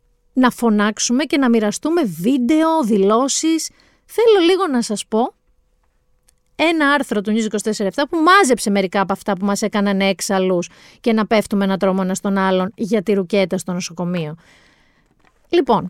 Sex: female